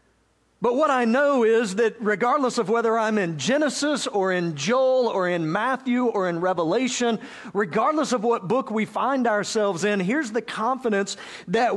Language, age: English, 50-69